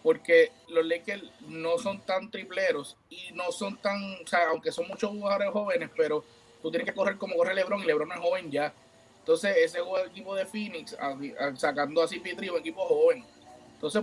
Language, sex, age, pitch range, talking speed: Spanish, male, 30-49, 185-235 Hz, 190 wpm